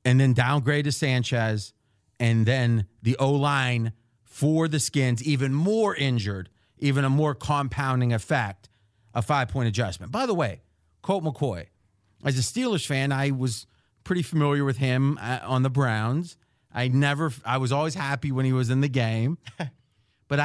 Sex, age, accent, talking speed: male, 40-59, American, 155 wpm